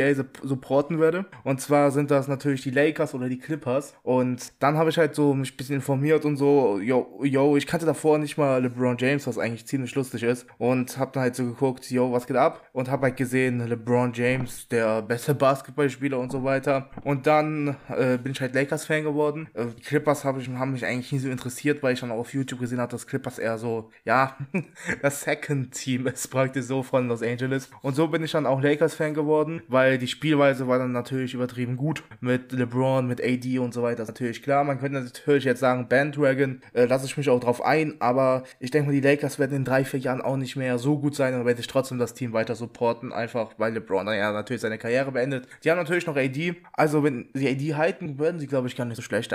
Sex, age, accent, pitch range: male, 20-39, German, 125-145 Hz